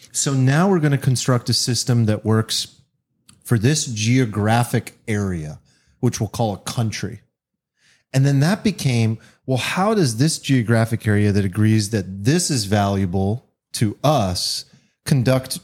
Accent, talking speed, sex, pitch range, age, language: American, 145 wpm, male, 105-135 Hz, 30-49, English